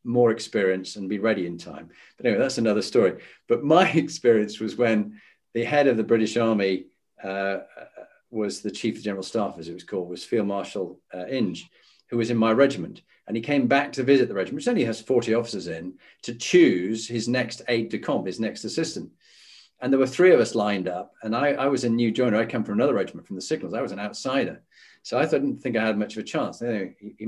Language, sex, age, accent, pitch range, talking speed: English, male, 40-59, British, 110-145 Hz, 240 wpm